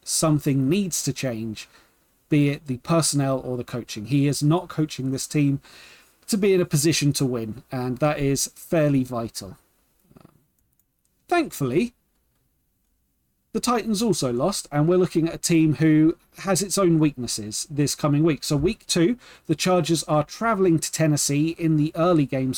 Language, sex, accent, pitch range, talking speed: English, male, British, 130-180 Hz, 160 wpm